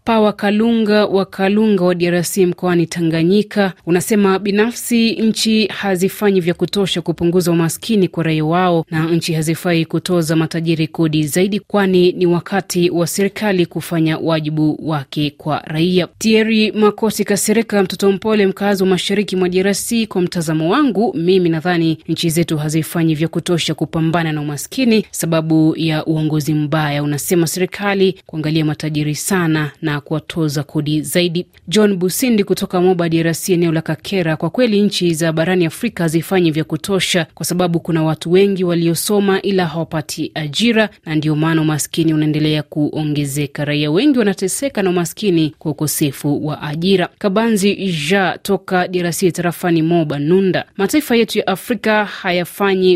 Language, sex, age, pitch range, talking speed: Swahili, female, 30-49, 160-195 Hz, 140 wpm